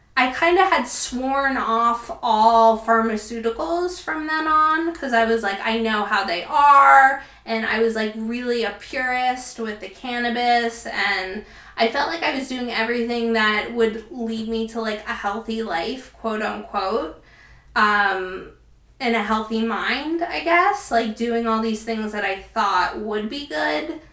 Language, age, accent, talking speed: English, 20-39, American, 165 wpm